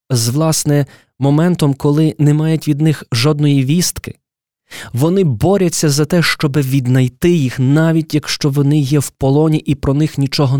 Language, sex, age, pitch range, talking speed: Ukrainian, male, 20-39, 125-165 Hz, 155 wpm